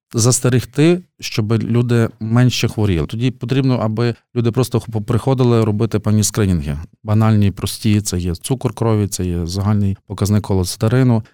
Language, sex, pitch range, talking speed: Ukrainian, male, 100-120 Hz, 130 wpm